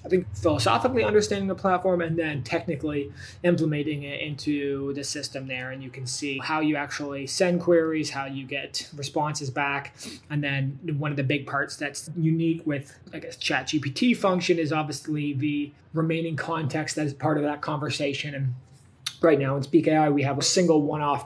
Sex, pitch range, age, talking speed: male, 140-160 Hz, 20-39, 180 wpm